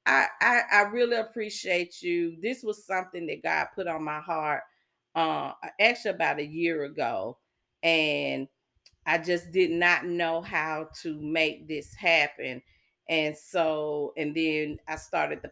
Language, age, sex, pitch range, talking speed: English, 40-59, female, 160-200 Hz, 150 wpm